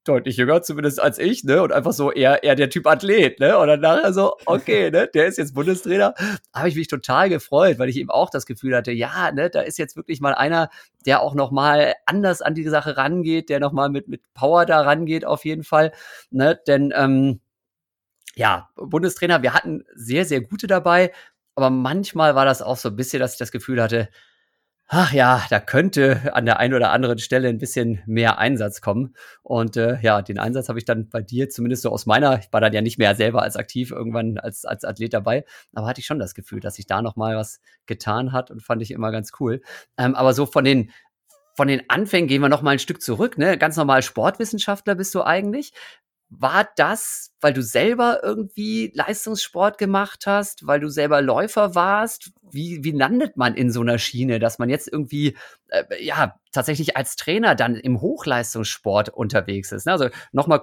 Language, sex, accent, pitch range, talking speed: German, male, German, 120-165 Hz, 205 wpm